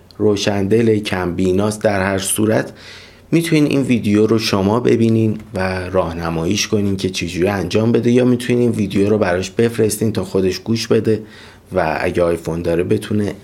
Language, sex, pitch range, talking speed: Persian, male, 90-110 Hz, 155 wpm